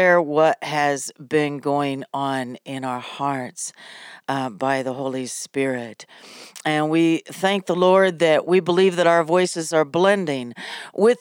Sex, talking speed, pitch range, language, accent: female, 145 wpm, 150-185 Hz, English, American